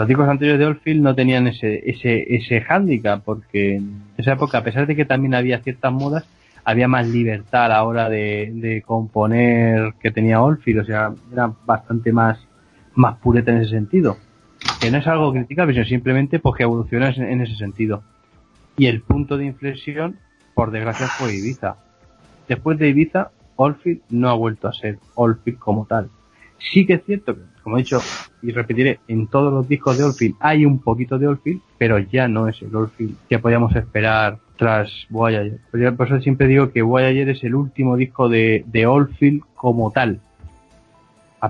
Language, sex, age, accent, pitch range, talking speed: Spanish, male, 30-49, Spanish, 110-130 Hz, 185 wpm